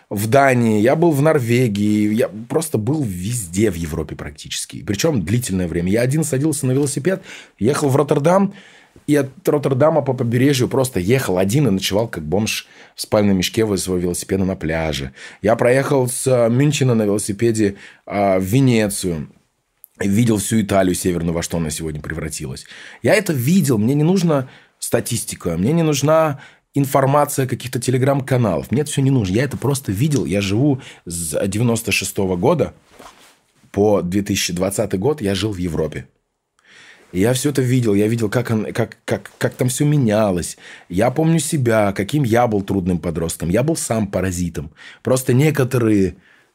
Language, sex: Russian, male